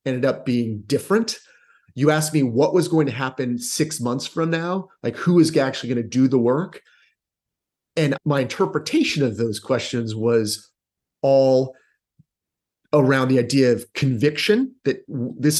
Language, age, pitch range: English, 30-49, 115-150 Hz